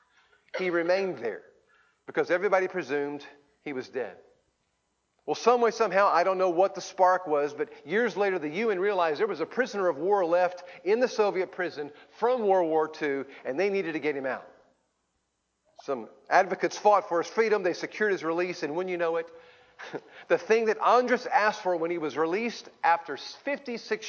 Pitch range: 150-215 Hz